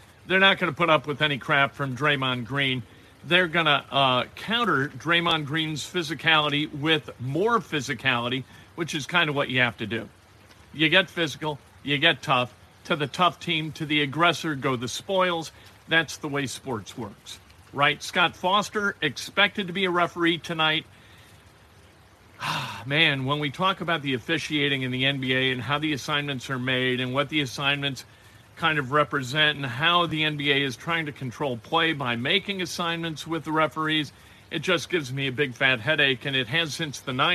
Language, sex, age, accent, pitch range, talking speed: English, male, 50-69, American, 115-155 Hz, 180 wpm